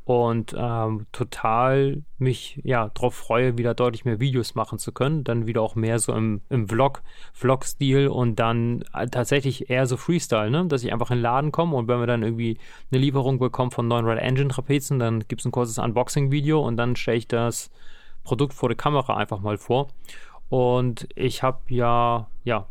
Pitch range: 115-130 Hz